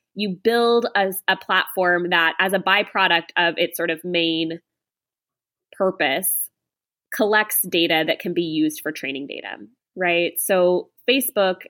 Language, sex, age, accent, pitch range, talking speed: English, female, 20-39, American, 170-210 Hz, 140 wpm